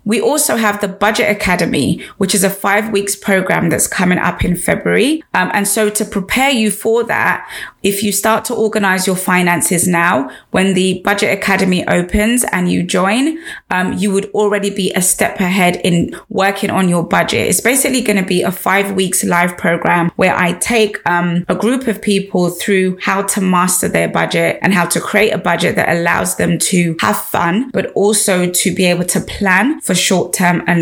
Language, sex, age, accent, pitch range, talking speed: English, female, 20-39, British, 180-215 Hz, 195 wpm